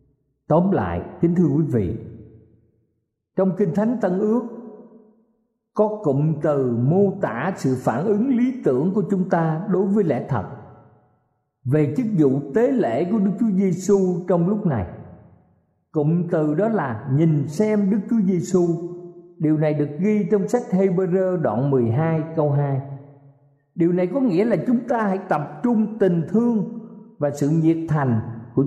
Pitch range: 135-200 Hz